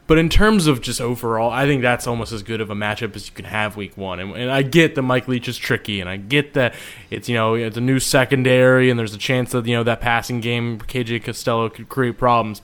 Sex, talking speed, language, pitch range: male, 265 wpm, English, 115-140 Hz